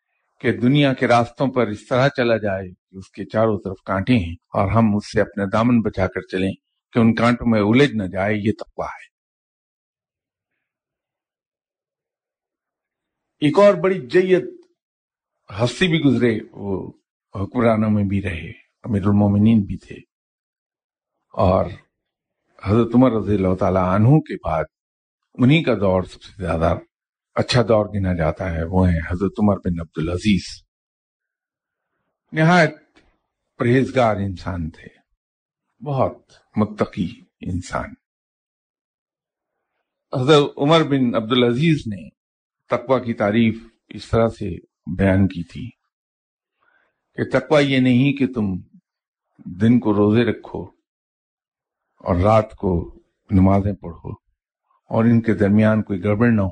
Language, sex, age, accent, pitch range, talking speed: English, male, 50-69, Indian, 95-120 Hz, 125 wpm